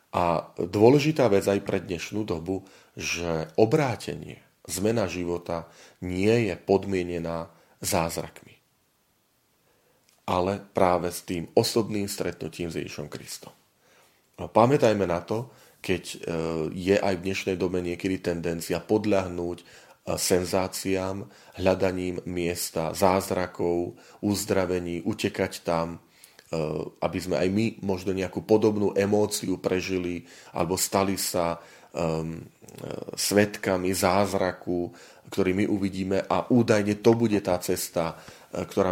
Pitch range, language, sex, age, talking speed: 85-100 Hz, Slovak, male, 40-59, 105 wpm